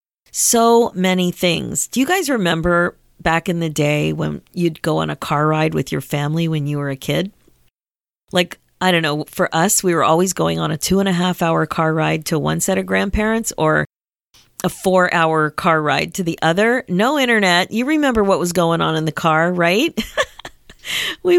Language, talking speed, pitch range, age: English, 200 wpm, 160-210 Hz, 40-59